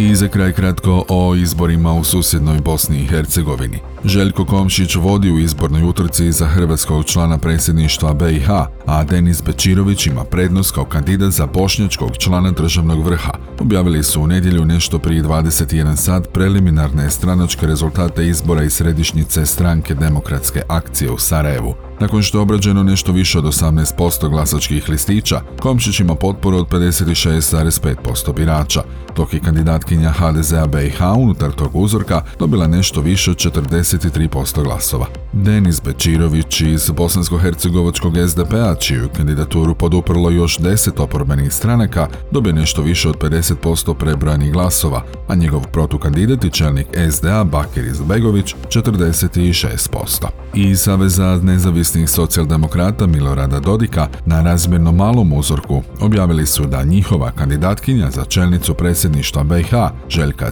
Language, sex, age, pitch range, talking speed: Croatian, male, 40-59, 75-90 Hz, 130 wpm